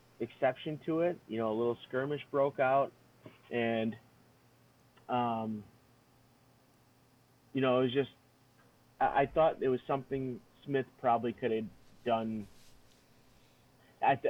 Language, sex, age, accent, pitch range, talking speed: English, male, 30-49, American, 115-130 Hz, 120 wpm